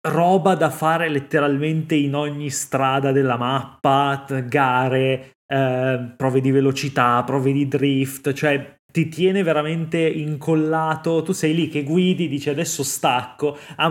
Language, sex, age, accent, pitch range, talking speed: Italian, male, 20-39, native, 125-150 Hz, 135 wpm